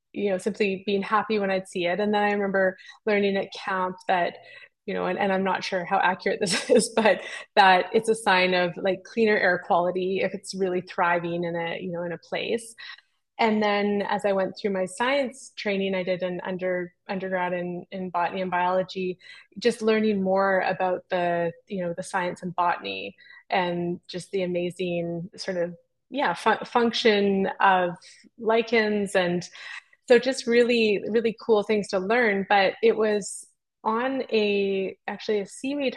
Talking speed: 175 wpm